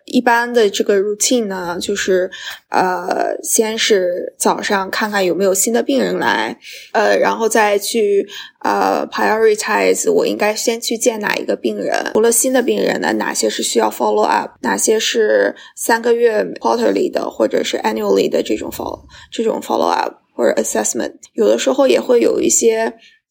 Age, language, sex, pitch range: 20-39, Chinese, female, 220-355 Hz